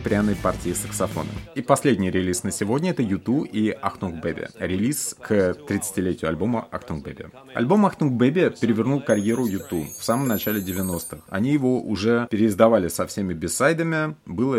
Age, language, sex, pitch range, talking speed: 30-49, Russian, male, 90-115 Hz, 155 wpm